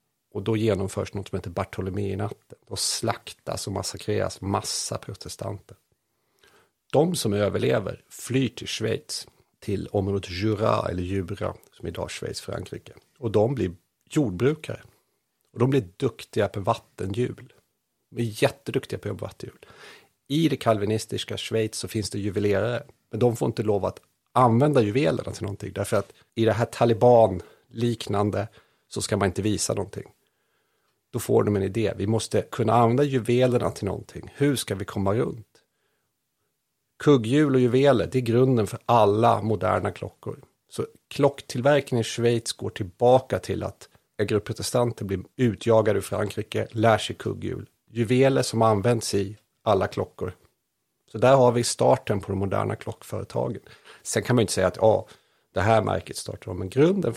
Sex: male